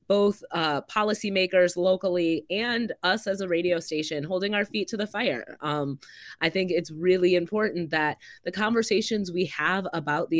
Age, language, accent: 20-39, English, American